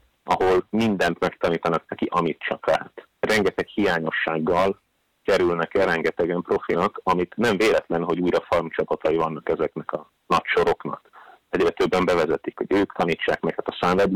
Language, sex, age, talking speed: Hungarian, male, 30-49, 145 wpm